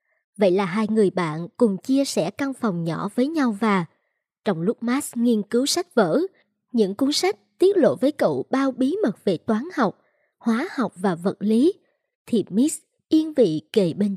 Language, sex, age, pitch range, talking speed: Vietnamese, male, 20-39, 200-270 Hz, 190 wpm